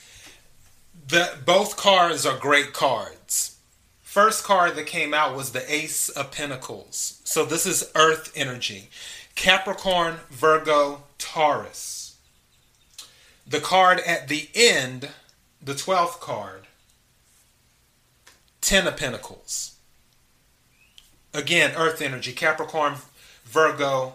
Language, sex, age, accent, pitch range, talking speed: English, male, 30-49, American, 130-160 Hz, 95 wpm